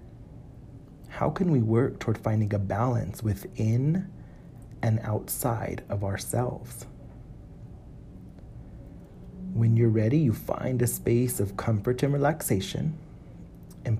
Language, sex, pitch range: English, male, 110-135 Hz